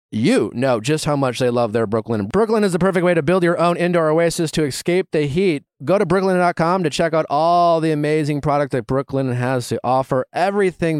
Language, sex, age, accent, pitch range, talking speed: English, male, 30-49, American, 135-185 Hz, 225 wpm